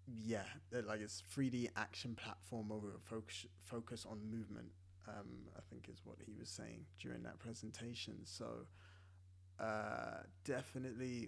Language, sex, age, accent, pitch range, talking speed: English, male, 20-39, British, 95-120 Hz, 150 wpm